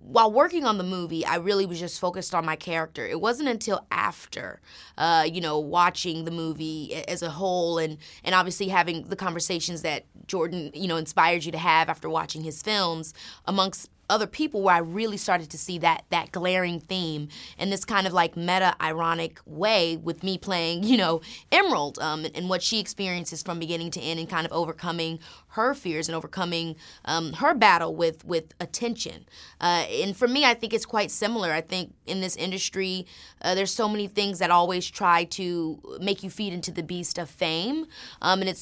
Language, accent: English, American